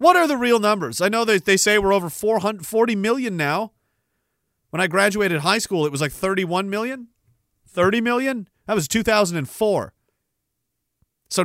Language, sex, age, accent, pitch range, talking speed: English, male, 40-59, American, 155-220 Hz, 175 wpm